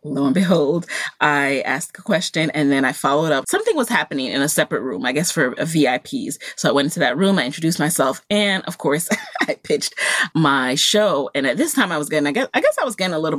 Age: 30-49